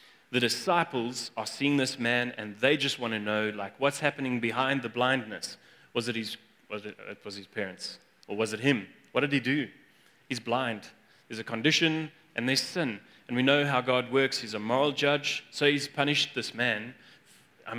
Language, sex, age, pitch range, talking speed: English, male, 30-49, 115-135 Hz, 195 wpm